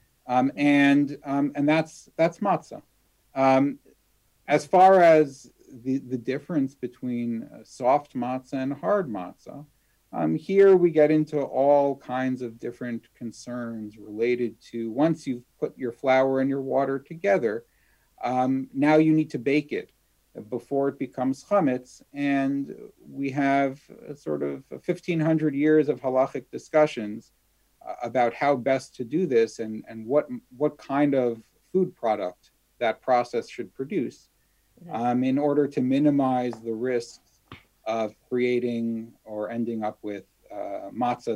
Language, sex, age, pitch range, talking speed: English, male, 50-69, 115-145 Hz, 140 wpm